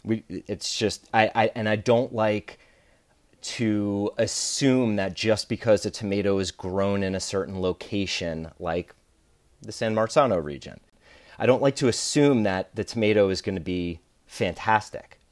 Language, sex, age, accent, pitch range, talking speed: English, male, 30-49, American, 95-120 Hz, 155 wpm